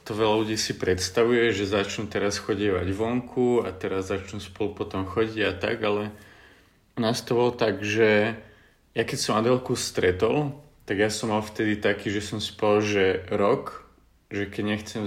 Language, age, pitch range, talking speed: Czech, 30-49, 100-115 Hz, 165 wpm